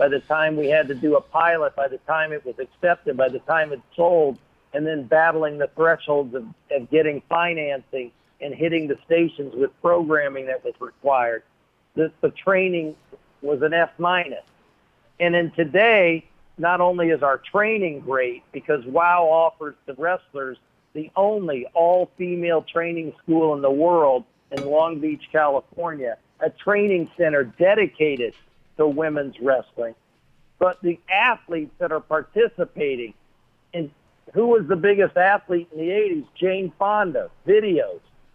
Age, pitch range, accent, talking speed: 50-69, 150-190 Hz, American, 150 wpm